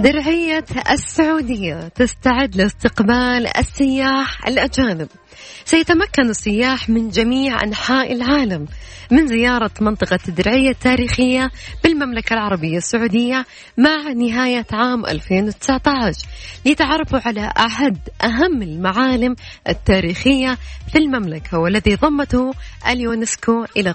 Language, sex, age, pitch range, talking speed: Arabic, female, 20-39, 200-270 Hz, 90 wpm